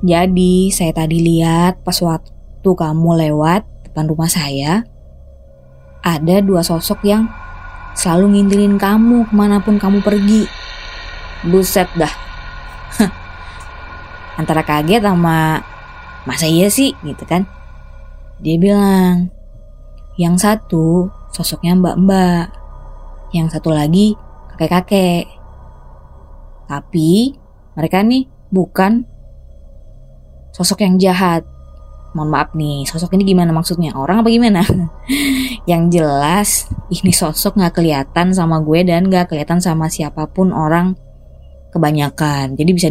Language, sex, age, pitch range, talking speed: Indonesian, female, 20-39, 145-190 Hz, 105 wpm